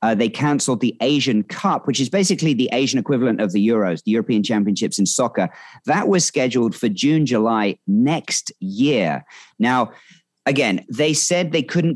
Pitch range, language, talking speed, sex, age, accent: 110-155 Hz, English, 170 wpm, male, 40-59, British